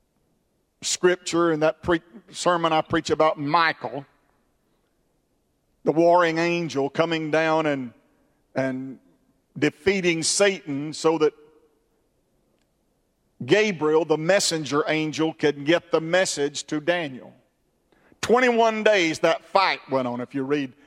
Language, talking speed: English, 110 wpm